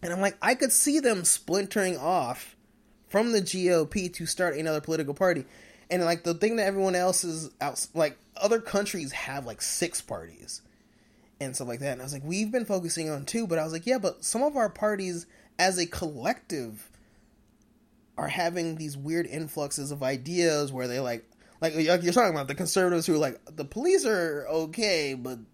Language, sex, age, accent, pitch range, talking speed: English, male, 20-39, American, 140-185 Hz, 195 wpm